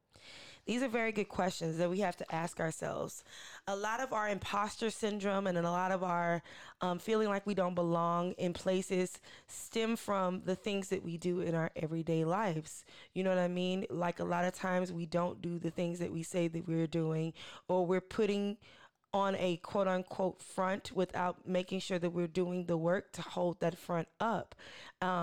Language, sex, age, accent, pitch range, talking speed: English, female, 20-39, American, 170-195 Hz, 195 wpm